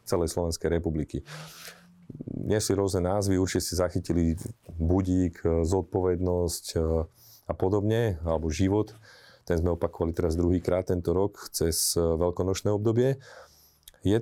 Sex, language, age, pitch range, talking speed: male, Slovak, 40-59, 85-100 Hz, 110 wpm